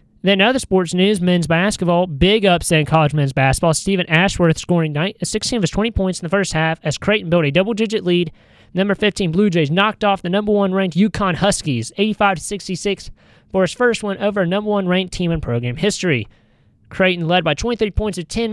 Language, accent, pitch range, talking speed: English, American, 160-205 Hz, 200 wpm